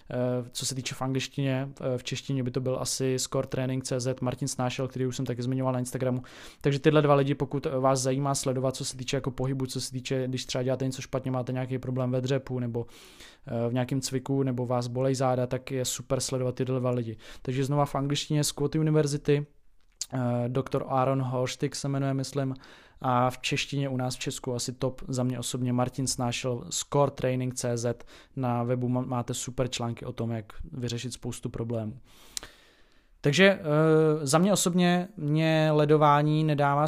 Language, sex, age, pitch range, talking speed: Czech, male, 20-39, 125-145 Hz, 175 wpm